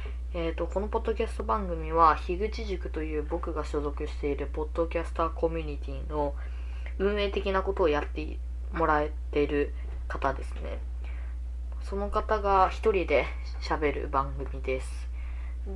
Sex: female